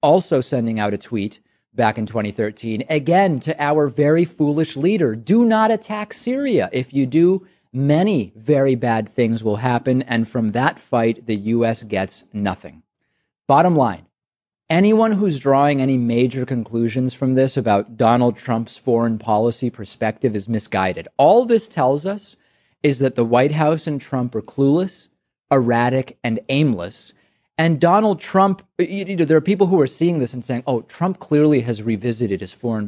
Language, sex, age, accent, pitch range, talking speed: English, male, 30-49, American, 115-160 Hz, 160 wpm